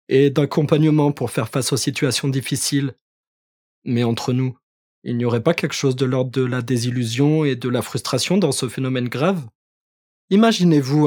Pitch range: 130-160 Hz